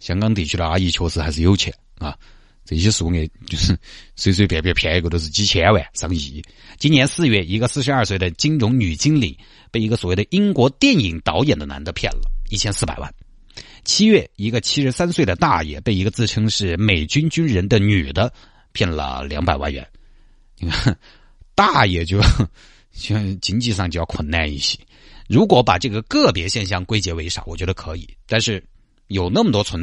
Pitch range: 90-125 Hz